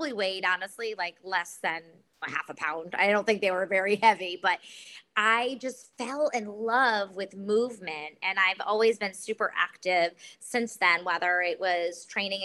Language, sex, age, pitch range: English, female, 20-39, 185-230 Hz